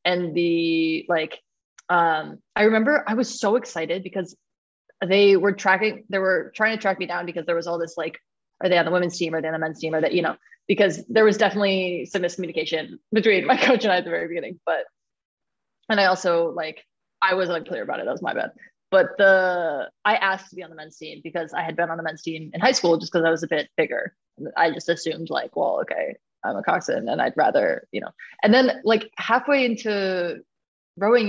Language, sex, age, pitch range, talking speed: English, female, 20-39, 170-210 Hz, 230 wpm